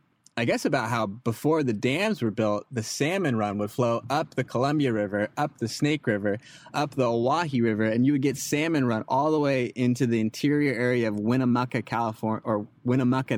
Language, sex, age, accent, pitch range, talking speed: English, male, 20-39, American, 110-140 Hz, 195 wpm